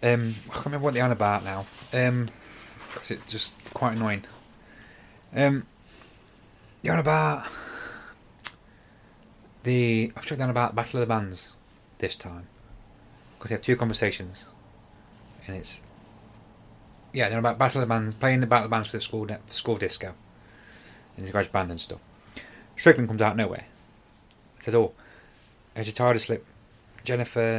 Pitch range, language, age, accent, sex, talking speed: 105-120 Hz, English, 30-49, British, male, 165 wpm